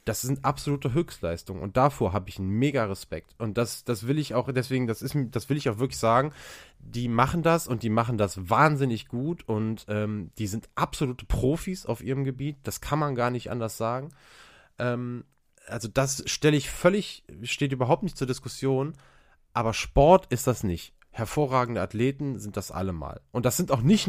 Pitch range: 105-135 Hz